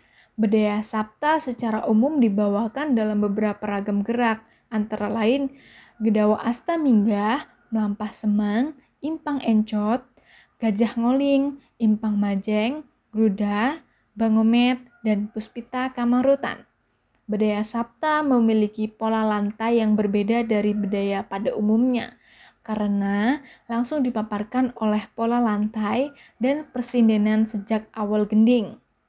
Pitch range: 210-250 Hz